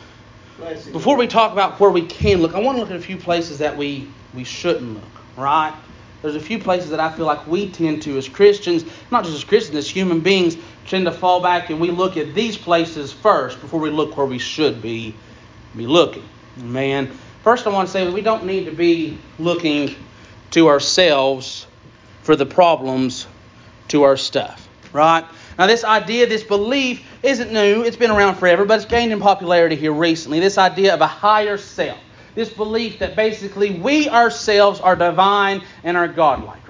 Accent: American